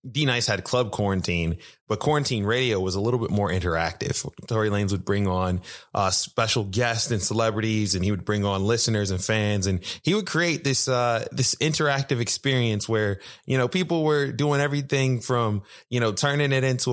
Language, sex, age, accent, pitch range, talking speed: English, male, 20-39, American, 100-130 Hz, 190 wpm